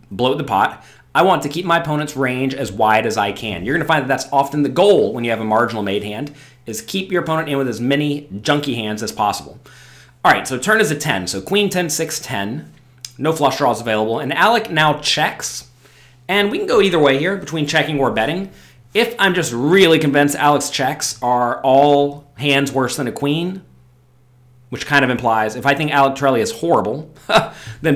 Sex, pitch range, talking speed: male, 125-155 Hz, 215 wpm